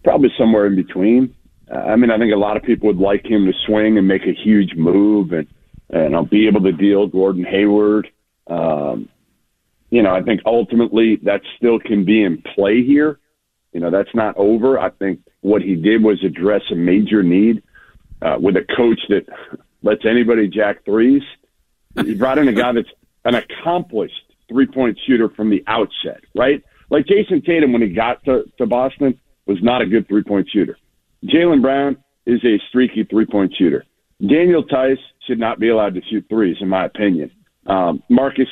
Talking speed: 185 wpm